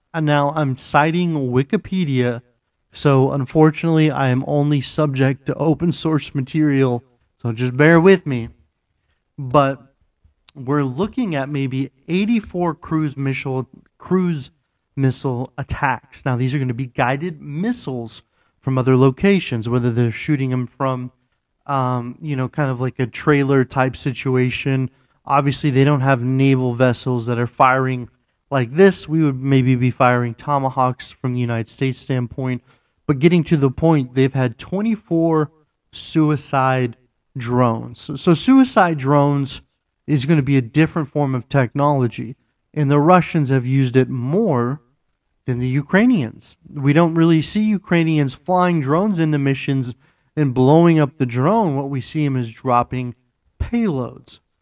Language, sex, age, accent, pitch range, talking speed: English, male, 30-49, American, 125-155 Hz, 145 wpm